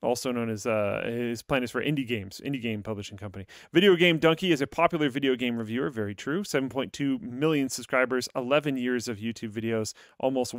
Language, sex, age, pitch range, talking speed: English, male, 30-49, 115-150 Hz, 195 wpm